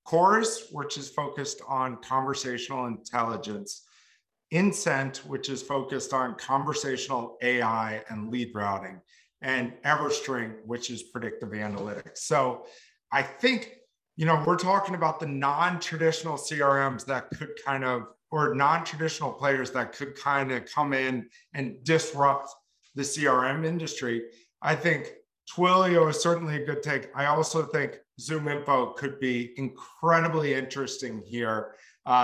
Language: English